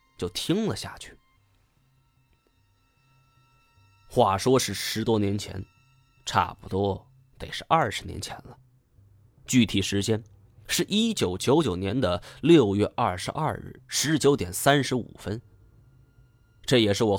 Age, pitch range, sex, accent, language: 20-39, 100-135 Hz, male, native, Chinese